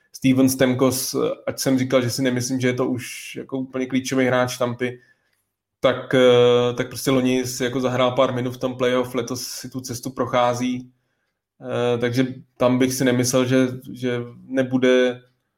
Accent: native